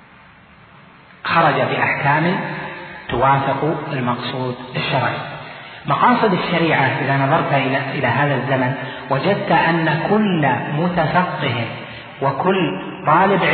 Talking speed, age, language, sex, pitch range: 80 wpm, 40-59, Arabic, male, 135-175 Hz